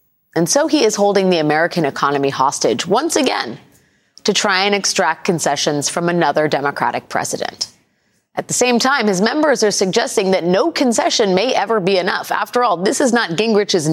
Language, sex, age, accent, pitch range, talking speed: English, female, 30-49, American, 170-235 Hz, 175 wpm